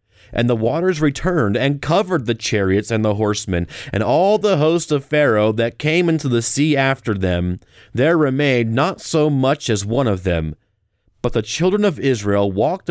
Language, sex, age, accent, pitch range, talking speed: English, male, 30-49, American, 100-140 Hz, 180 wpm